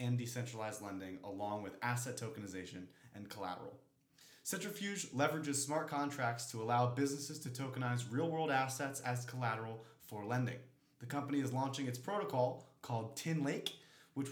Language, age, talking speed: English, 30-49, 145 wpm